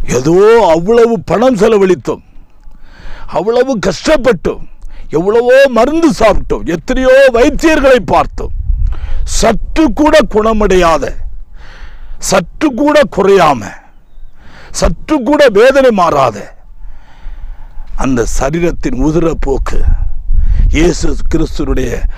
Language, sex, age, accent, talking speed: Tamil, male, 50-69, native, 75 wpm